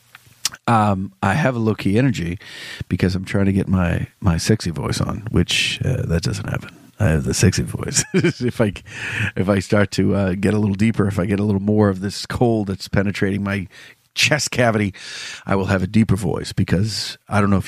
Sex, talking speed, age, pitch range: male, 210 wpm, 40-59, 100-130 Hz